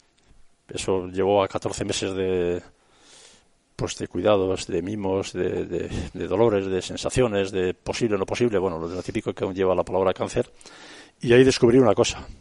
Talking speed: 170 wpm